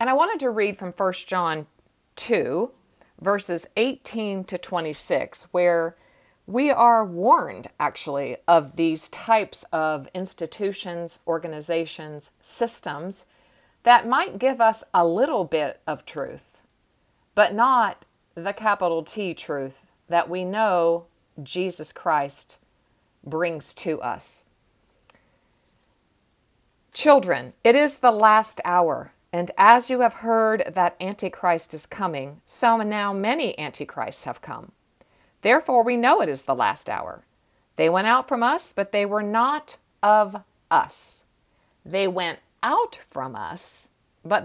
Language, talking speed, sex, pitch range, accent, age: English, 125 wpm, female, 165-220 Hz, American, 50-69